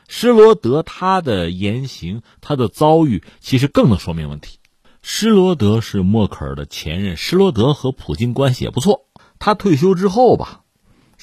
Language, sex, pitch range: Chinese, male, 90-135 Hz